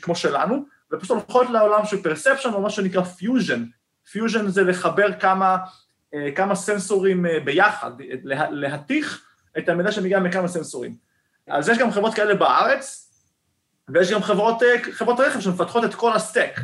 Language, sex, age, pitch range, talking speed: Hebrew, male, 30-49, 150-215 Hz, 140 wpm